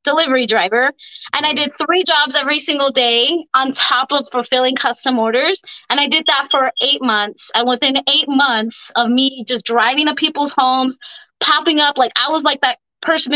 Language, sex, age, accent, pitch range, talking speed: English, female, 20-39, American, 250-300 Hz, 190 wpm